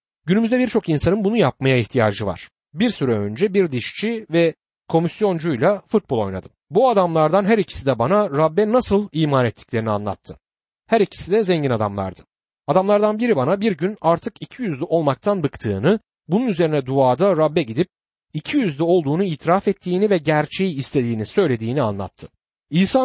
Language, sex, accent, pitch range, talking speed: Turkish, male, native, 125-195 Hz, 145 wpm